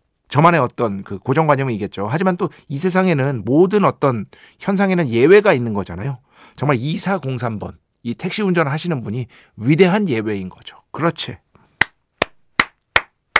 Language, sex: Korean, male